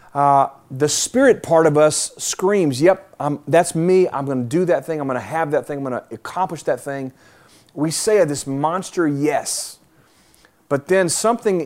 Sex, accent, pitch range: male, American, 145-190 Hz